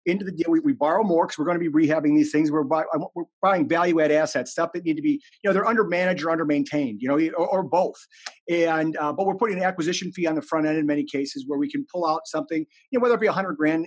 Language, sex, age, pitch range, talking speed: English, male, 40-59, 165-215 Hz, 300 wpm